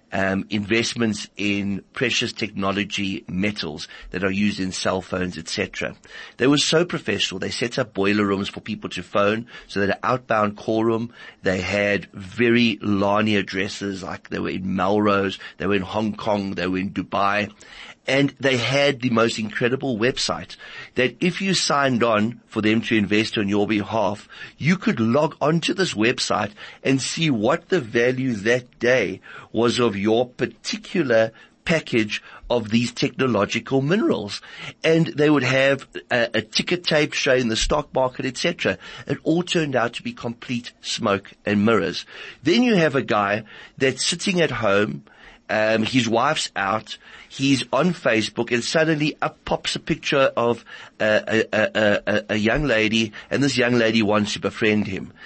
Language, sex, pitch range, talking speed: English, male, 105-145 Hz, 165 wpm